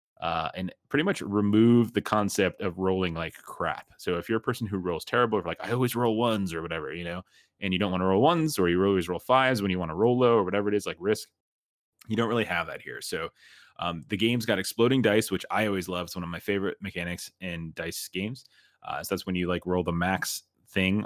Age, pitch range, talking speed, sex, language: 20-39, 85-110 Hz, 255 wpm, male, English